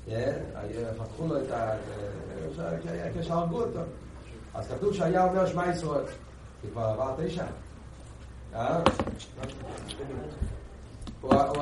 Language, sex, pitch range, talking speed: Hebrew, male, 105-165 Hz, 100 wpm